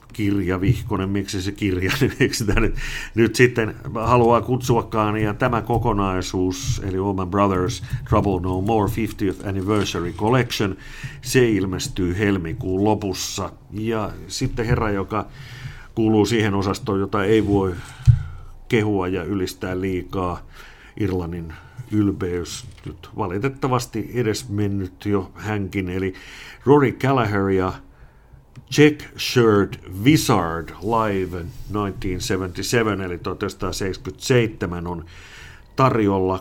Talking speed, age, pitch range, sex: 100 wpm, 50-69, 95-115 Hz, male